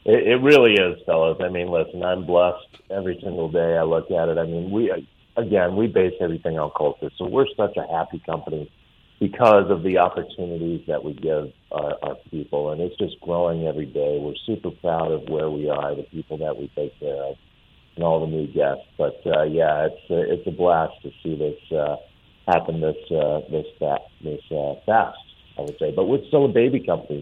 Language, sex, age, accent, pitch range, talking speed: English, male, 40-59, American, 80-90 Hz, 210 wpm